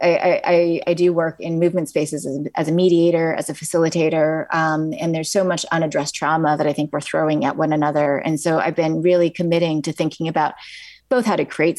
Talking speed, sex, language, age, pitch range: 215 wpm, female, English, 30-49, 155-175 Hz